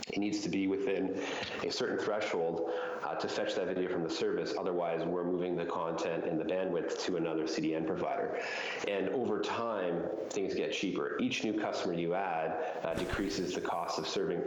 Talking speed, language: 185 wpm, English